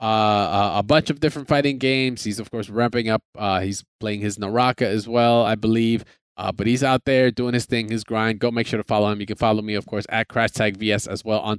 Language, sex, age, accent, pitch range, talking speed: English, male, 20-39, American, 110-155 Hz, 260 wpm